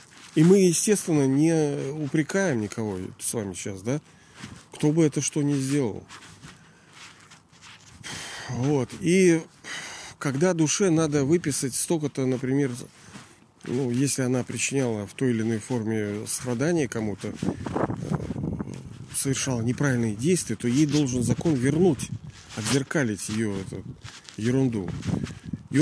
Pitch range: 115-160 Hz